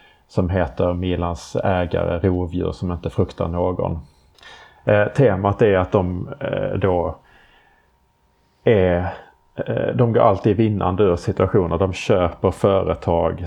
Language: Swedish